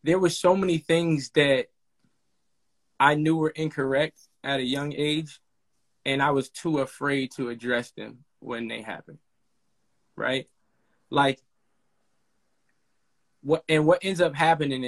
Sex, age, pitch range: male, 20-39, 135-175 Hz